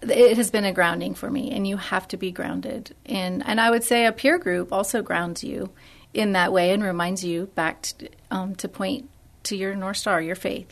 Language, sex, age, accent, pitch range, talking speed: English, female, 30-49, American, 185-230 Hz, 230 wpm